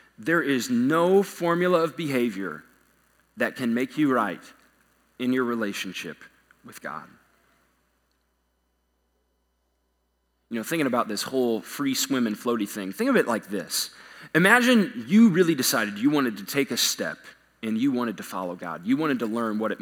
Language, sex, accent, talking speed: English, male, American, 165 wpm